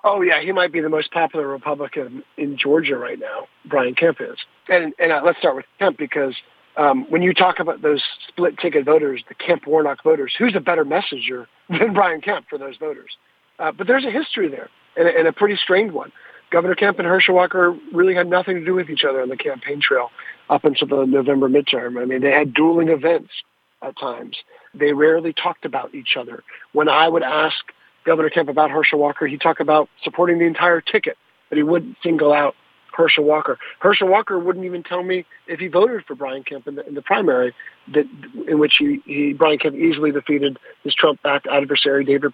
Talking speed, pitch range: 210 wpm, 150-185 Hz